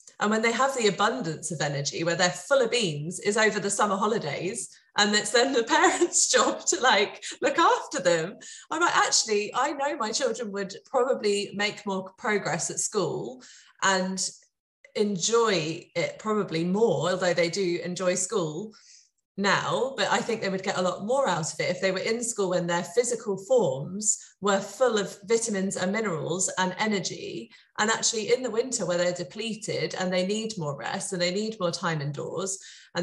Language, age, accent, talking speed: English, 30-49, British, 190 wpm